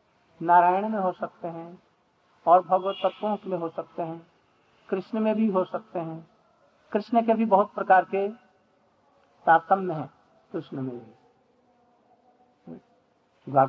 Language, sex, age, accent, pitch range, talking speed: Hindi, male, 50-69, native, 175-220 Hz, 120 wpm